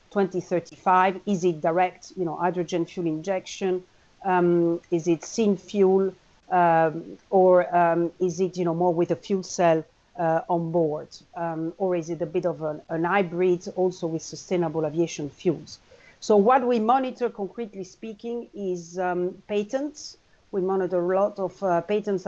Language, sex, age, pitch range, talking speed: English, female, 50-69, 170-200 Hz, 160 wpm